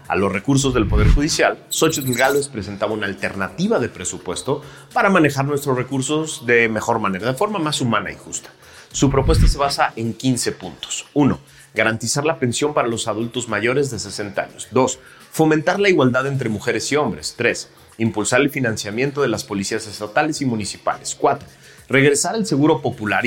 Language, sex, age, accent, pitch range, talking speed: Spanish, male, 40-59, Mexican, 110-145 Hz, 175 wpm